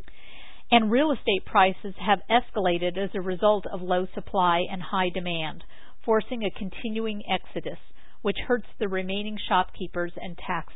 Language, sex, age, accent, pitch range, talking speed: English, female, 50-69, American, 180-215 Hz, 145 wpm